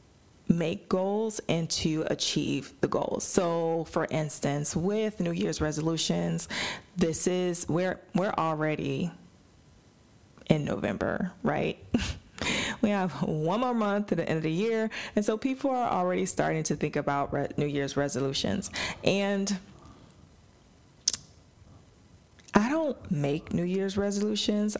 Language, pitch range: English, 150-205 Hz